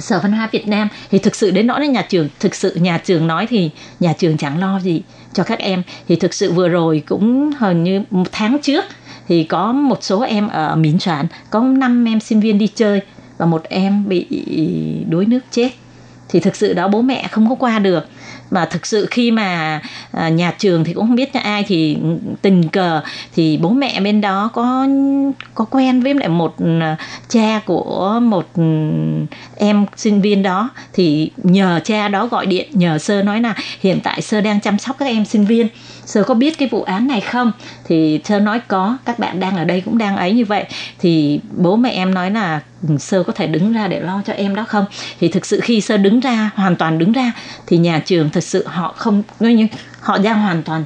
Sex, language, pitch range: female, Vietnamese, 170-220 Hz